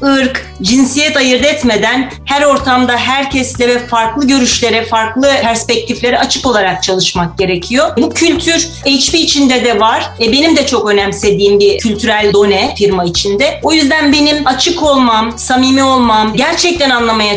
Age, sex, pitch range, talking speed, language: 40-59, female, 215-285 Hz, 140 wpm, Turkish